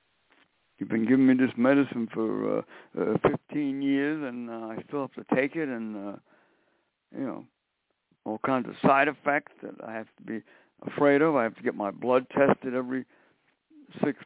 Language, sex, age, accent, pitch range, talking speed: English, male, 60-79, American, 125-165 Hz, 185 wpm